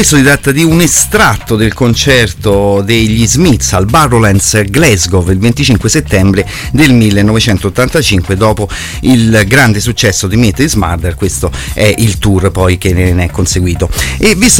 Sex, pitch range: male, 100-130 Hz